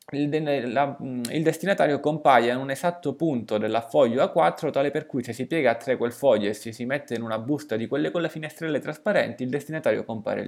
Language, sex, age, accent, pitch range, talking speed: Italian, male, 20-39, native, 115-150 Hz, 205 wpm